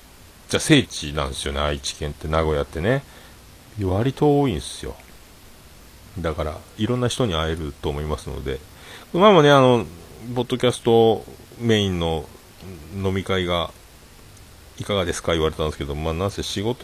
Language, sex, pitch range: Japanese, male, 80-105 Hz